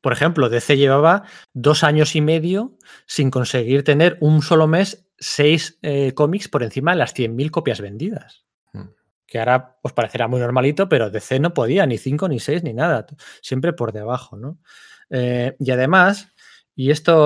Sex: male